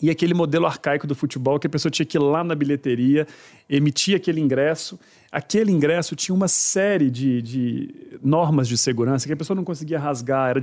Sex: male